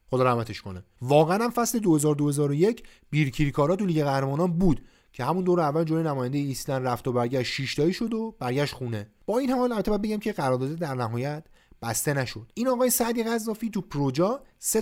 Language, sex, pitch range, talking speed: Persian, male, 120-190 Hz, 180 wpm